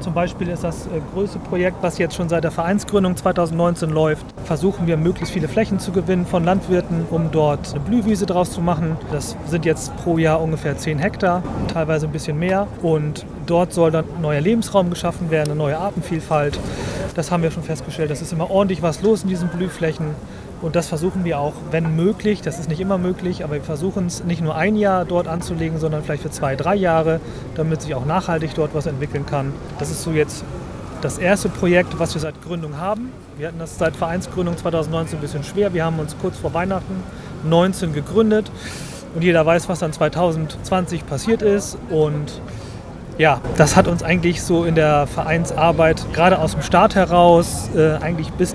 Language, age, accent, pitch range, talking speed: English, 30-49, German, 155-180 Hz, 195 wpm